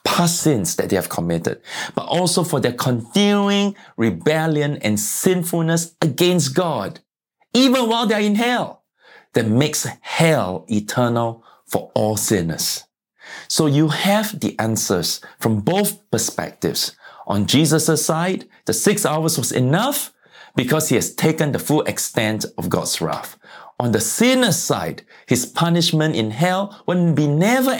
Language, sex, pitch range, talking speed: English, male, 115-185 Hz, 140 wpm